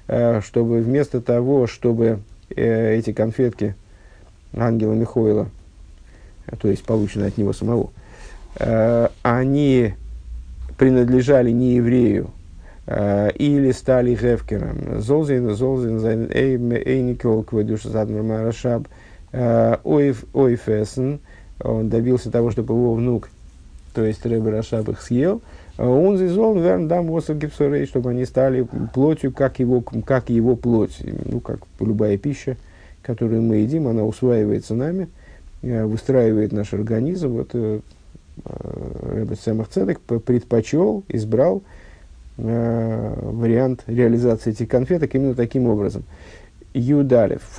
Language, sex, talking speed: Russian, male, 100 wpm